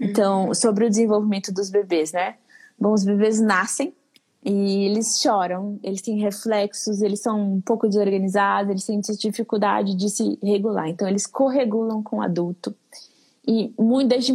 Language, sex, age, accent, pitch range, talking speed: Portuguese, female, 20-39, Brazilian, 200-245 Hz, 150 wpm